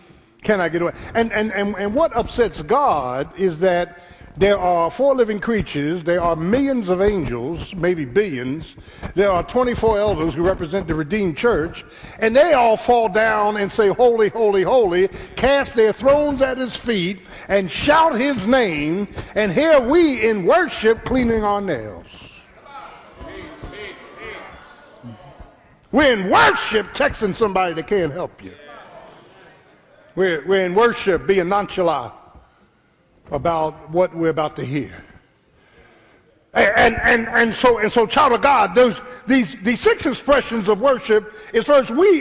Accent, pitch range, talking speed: American, 185-245 Hz, 145 wpm